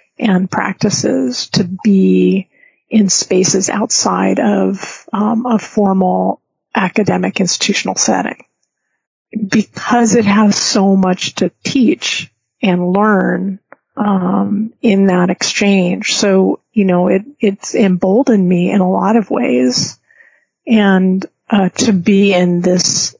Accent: American